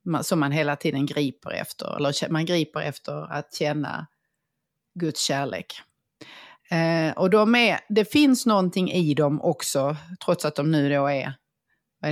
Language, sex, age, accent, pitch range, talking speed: English, female, 30-49, Swedish, 155-205 Hz, 150 wpm